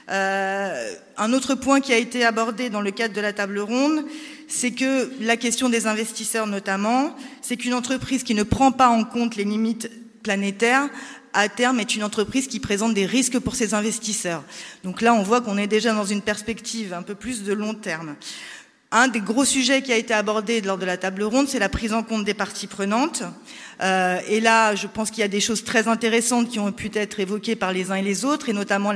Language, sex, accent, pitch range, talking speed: French, female, French, 200-235 Hz, 225 wpm